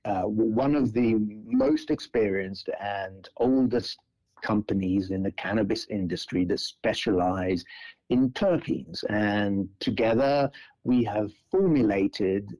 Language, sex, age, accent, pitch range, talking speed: English, male, 60-79, British, 100-125 Hz, 105 wpm